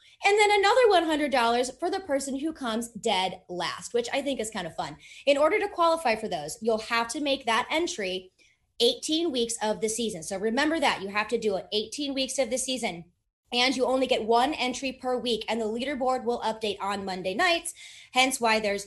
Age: 30-49